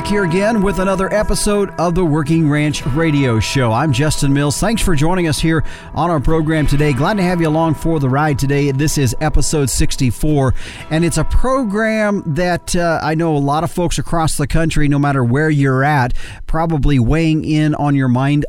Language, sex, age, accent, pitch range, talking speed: English, male, 40-59, American, 130-160 Hz, 200 wpm